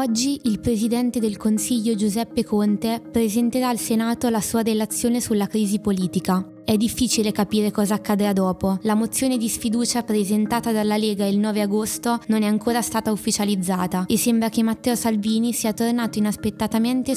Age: 20-39